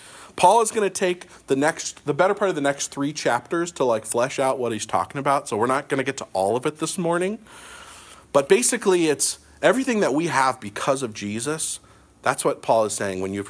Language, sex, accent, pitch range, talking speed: English, male, American, 100-170 Hz, 230 wpm